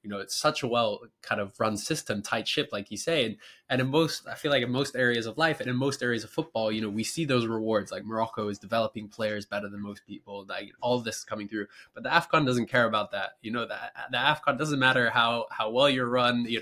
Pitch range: 110-125 Hz